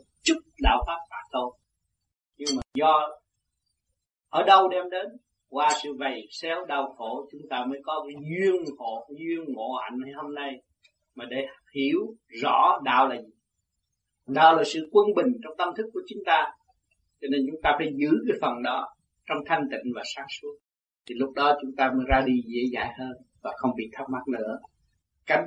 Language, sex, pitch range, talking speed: Vietnamese, male, 125-165 Hz, 195 wpm